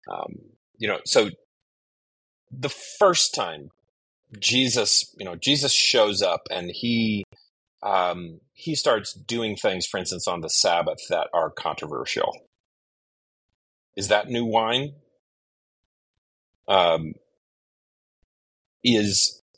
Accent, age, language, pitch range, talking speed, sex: American, 30-49, English, 95-130 Hz, 105 wpm, male